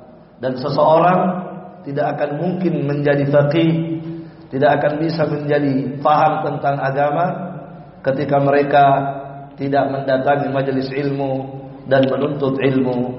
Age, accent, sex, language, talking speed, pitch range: 40-59, native, male, Indonesian, 105 wpm, 135-160 Hz